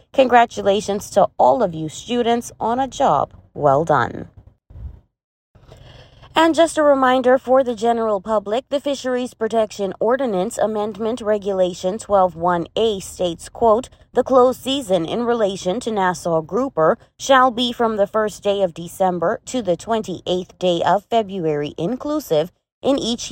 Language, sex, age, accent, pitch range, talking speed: English, female, 20-39, American, 180-240 Hz, 140 wpm